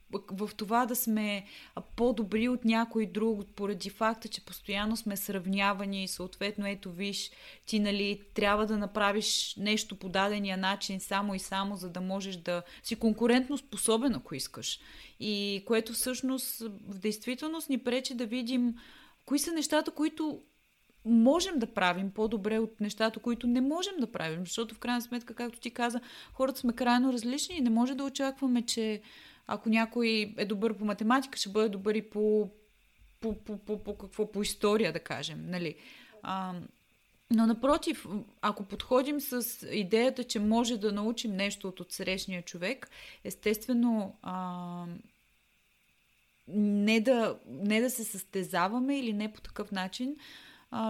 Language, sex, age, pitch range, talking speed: Bulgarian, female, 30-49, 200-245 Hz, 155 wpm